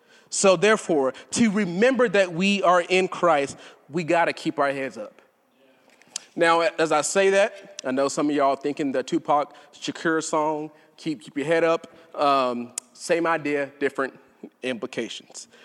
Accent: American